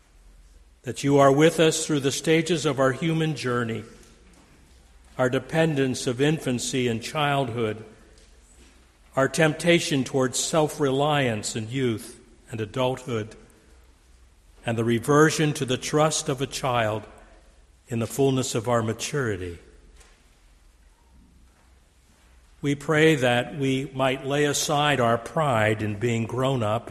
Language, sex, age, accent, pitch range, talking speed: English, male, 60-79, American, 100-140 Hz, 120 wpm